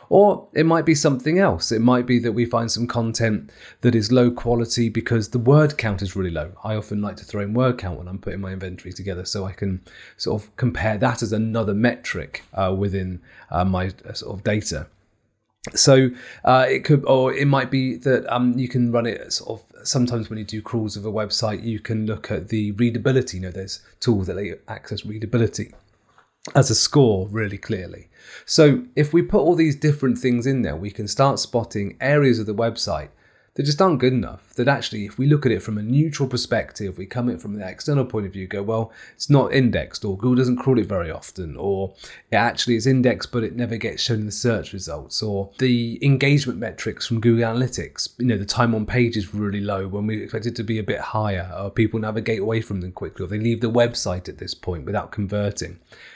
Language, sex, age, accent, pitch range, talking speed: English, male, 30-49, British, 100-125 Hz, 225 wpm